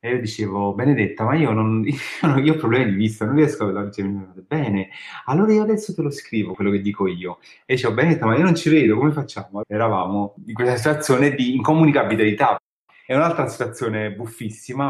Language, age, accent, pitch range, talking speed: Italian, 30-49, native, 100-145 Hz, 190 wpm